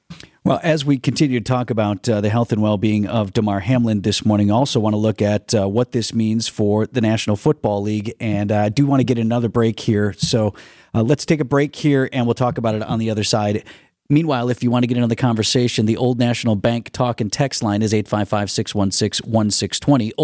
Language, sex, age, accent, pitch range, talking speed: English, male, 40-59, American, 105-130 Hz, 230 wpm